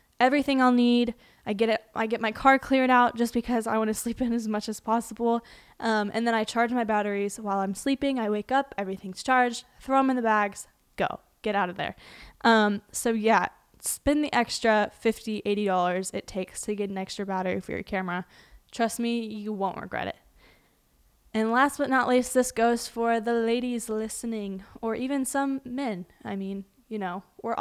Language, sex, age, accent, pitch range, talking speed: English, female, 10-29, American, 210-255 Hz, 200 wpm